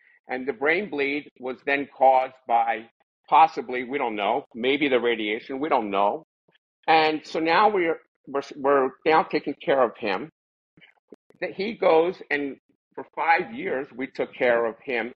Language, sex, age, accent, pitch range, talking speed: English, male, 50-69, American, 130-180 Hz, 170 wpm